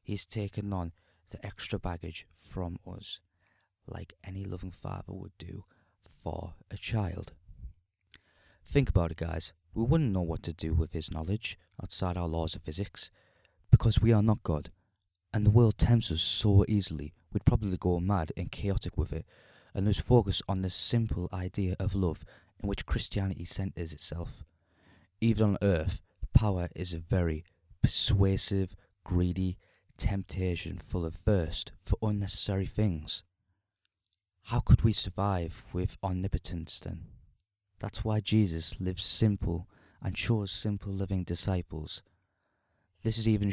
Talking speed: 145 wpm